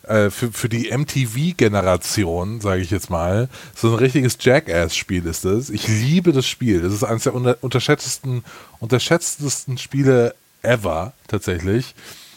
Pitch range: 110-130 Hz